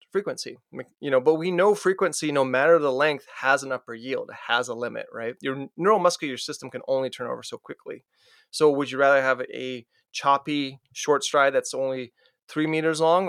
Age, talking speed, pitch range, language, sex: 20-39, 190 wpm, 130-175 Hz, English, male